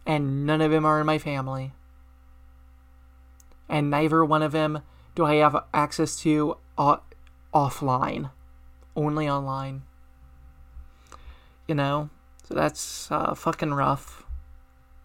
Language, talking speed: English, 115 wpm